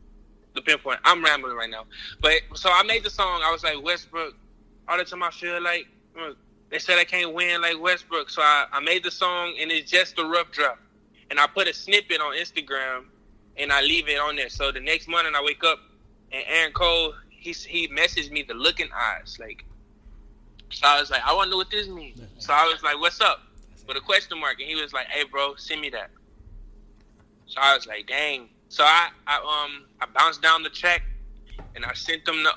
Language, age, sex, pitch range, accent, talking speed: English, 20-39, male, 130-175 Hz, American, 220 wpm